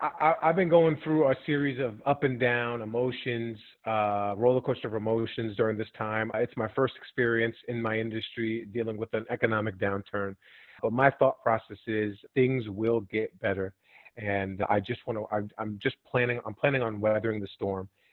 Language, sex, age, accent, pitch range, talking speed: English, male, 30-49, American, 105-125 Hz, 180 wpm